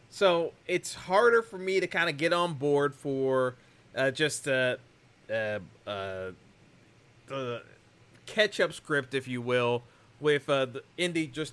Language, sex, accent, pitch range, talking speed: English, male, American, 145-215 Hz, 140 wpm